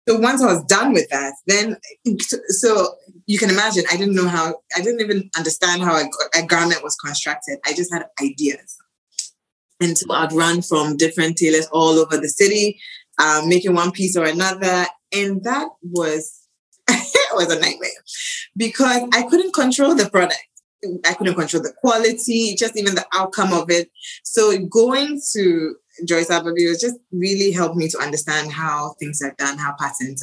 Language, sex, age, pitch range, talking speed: English, female, 20-39, 165-220 Hz, 175 wpm